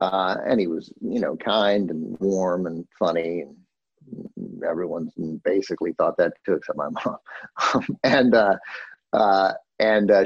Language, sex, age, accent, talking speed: English, male, 50-69, American, 145 wpm